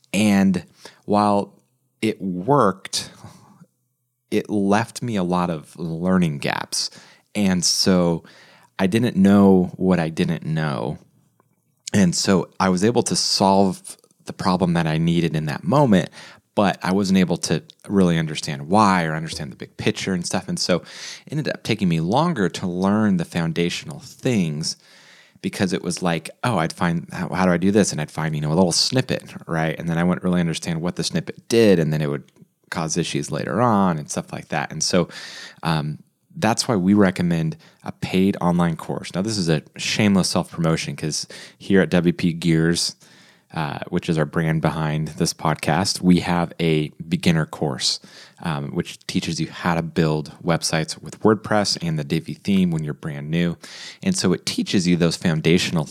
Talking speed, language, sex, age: 180 wpm, English, male, 30-49